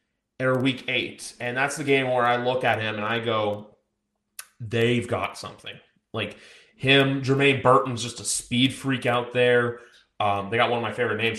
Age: 20-39